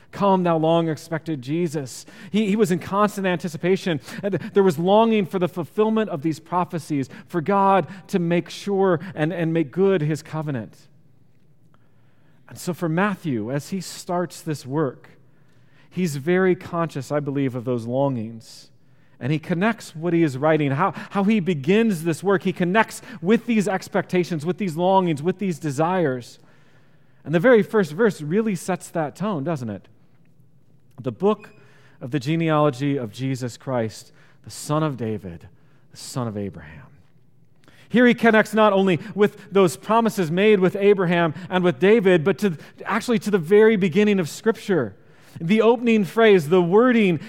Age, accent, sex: 40-59, American, male